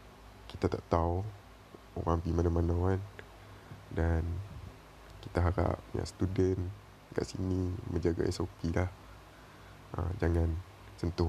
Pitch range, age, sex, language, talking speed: 90-105 Hz, 20-39, male, Malay, 100 wpm